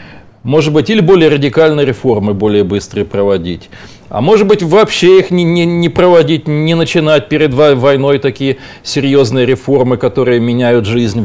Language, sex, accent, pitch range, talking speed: Russian, male, native, 125-205 Hz, 145 wpm